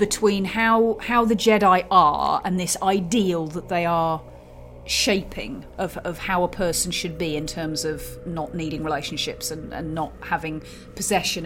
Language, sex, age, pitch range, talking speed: English, female, 30-49, 160-200 Hz, 160 wpm